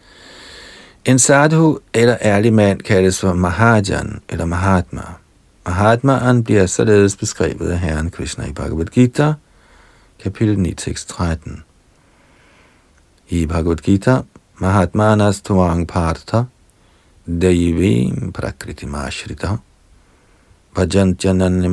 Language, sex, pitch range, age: Danish, male, 90-120 Hz, 50-69